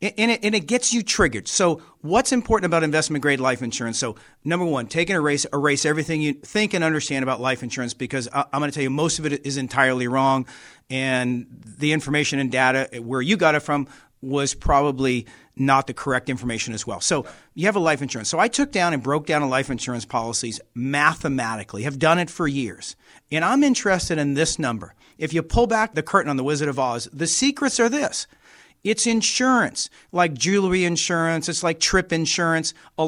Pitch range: 135-185 Hz